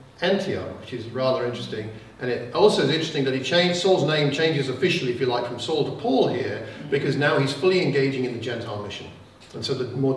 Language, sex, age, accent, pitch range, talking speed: English, male, 50-69, British, 120-155 Hz, 225 wpm